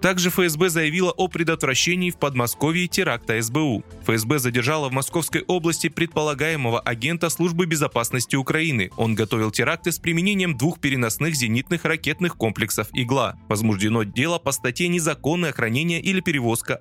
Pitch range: 115-170 Hz